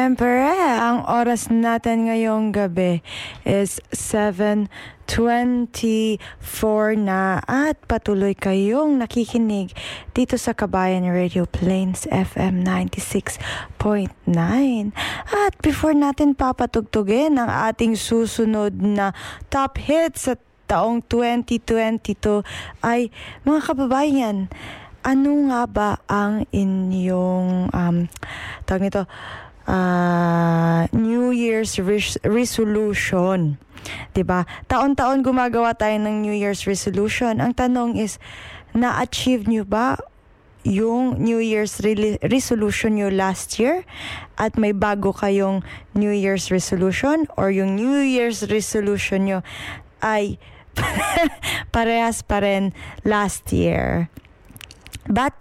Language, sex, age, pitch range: Filipino, female, 20-39, 195-240 Hz